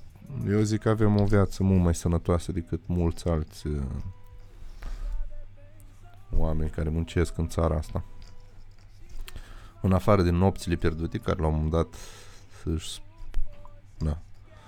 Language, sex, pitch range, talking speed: Romanian, male, 90-100 Hz, 125 wpm